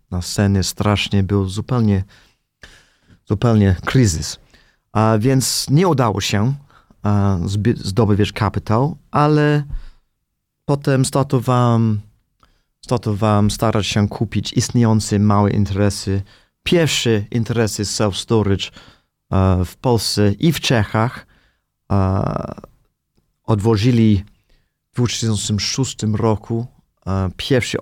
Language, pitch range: Polish, 100-120 Hz